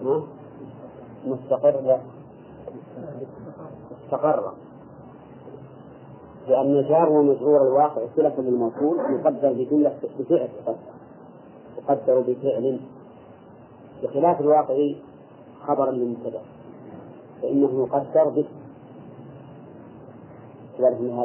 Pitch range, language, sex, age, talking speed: 130-150 Hz, English, male, 40-59, 60 wpm